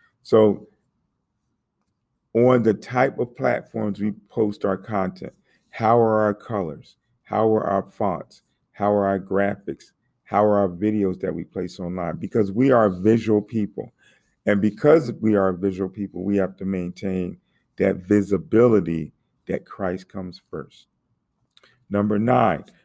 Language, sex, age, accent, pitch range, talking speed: English, male, 40-59, American, 100-125 Hz, 140 wpm